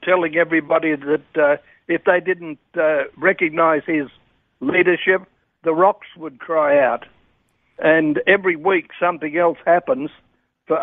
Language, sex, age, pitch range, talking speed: English, male, 60-79, 155-185 Hz, 125 wpm